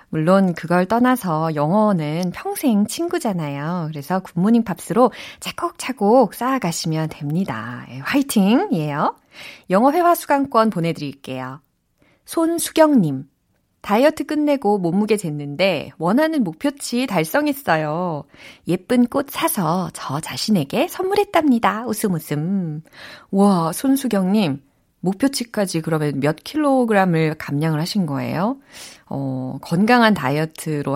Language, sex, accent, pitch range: Korean, female, native, 155-235 Hz